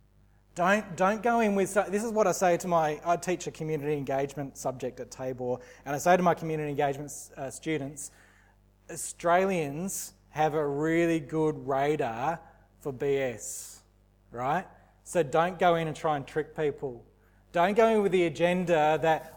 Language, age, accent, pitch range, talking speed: English, 20-39, Australian, 135-175 Hz, 165 wpm